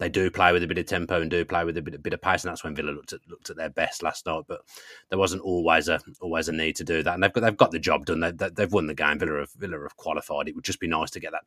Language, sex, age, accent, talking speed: English, male, 30-49, British, 350 wpm